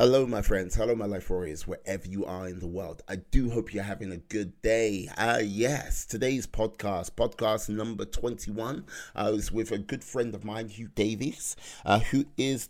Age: 30-49